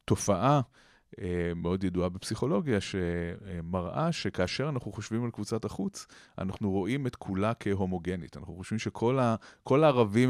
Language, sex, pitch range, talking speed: Hebrew, male, 90-120 Hz, 120 wpm